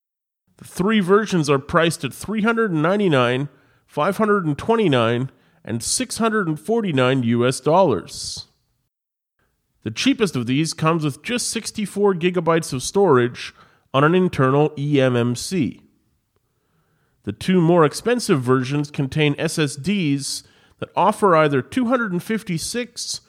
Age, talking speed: 30-49, 100 wpm